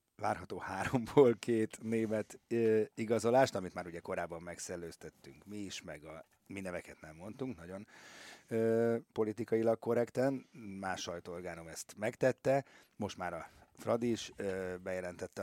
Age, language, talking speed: 30-49, Hungarian, 130 wpm